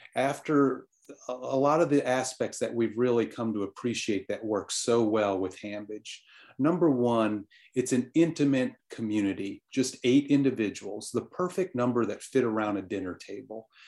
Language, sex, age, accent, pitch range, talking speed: English, male, 40-59, American, 105-135 Hz, 155 wpm